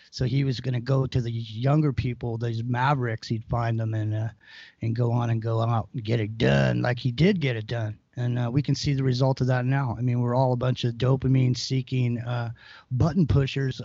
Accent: American